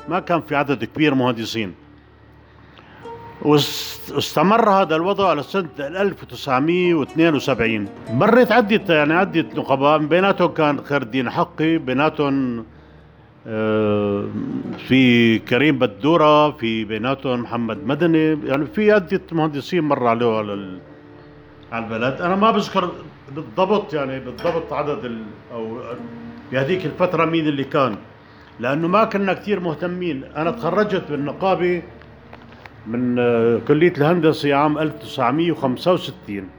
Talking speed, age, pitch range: 105 wpm, 50-69, 115-175 Hz